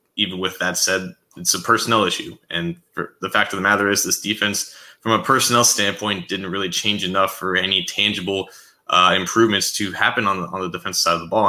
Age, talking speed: 20-39, 220 wpm